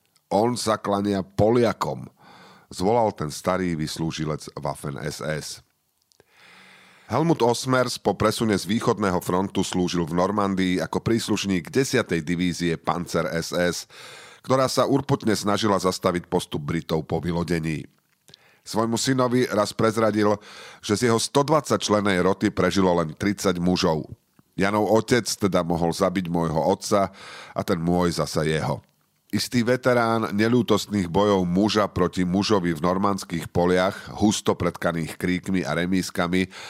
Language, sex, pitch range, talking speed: Slovak, male, 85-105 Hz, 120 wpm